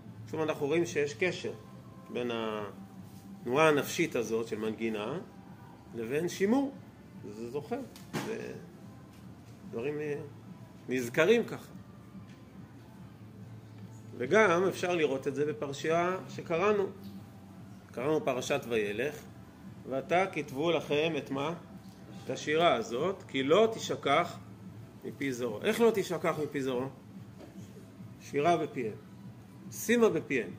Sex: male